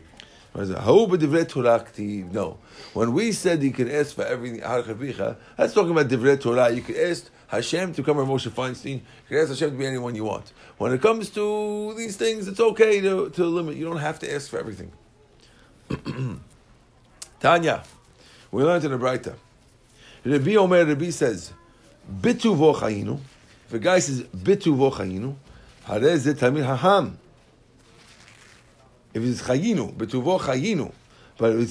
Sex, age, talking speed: male, 50-69, 140 wpm